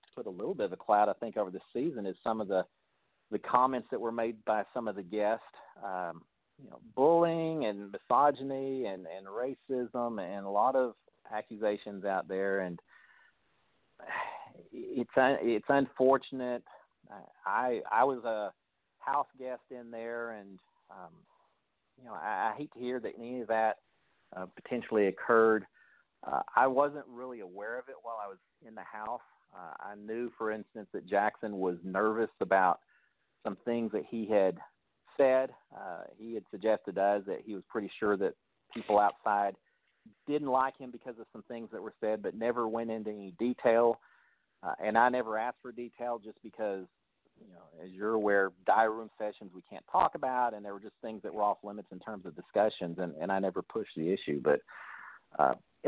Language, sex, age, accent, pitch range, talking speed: English, male, 40-59, American, 105-125 Hz, 185 wpm